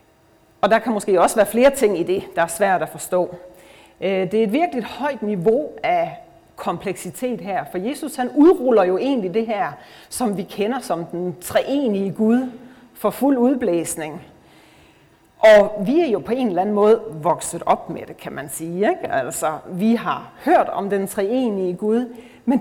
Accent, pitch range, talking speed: native, 185-255 Hz, 180 wpm